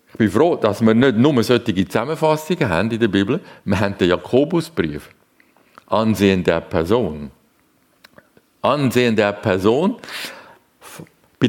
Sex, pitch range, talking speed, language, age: male, 95-145 Hz, 125 wpm, German, 50-69